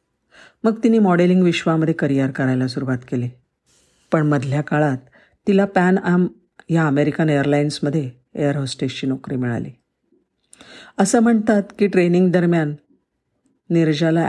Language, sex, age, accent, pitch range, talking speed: Marathi, female, 50-69, native, 140-180 Hz, 115 wpm